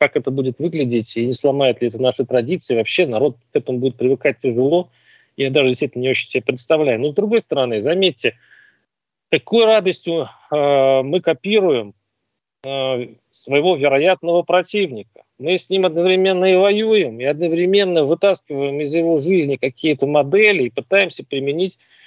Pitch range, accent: 135-185 Hz, native